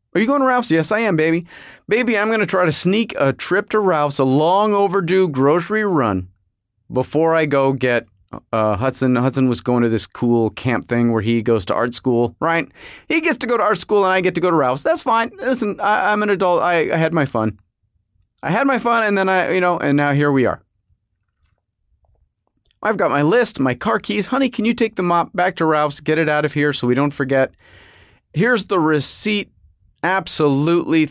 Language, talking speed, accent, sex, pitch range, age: English, 220 wpm, American, male, 115-190 Hz, 30-49